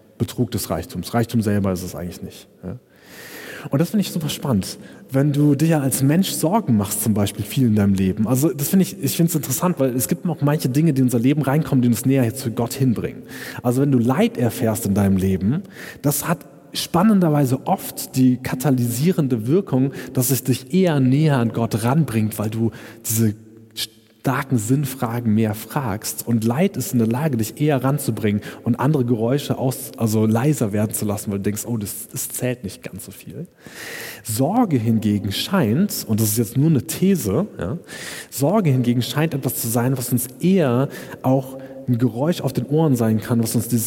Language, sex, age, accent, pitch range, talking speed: German, male, 30-49, German, 110-140 Hz, 195 wpm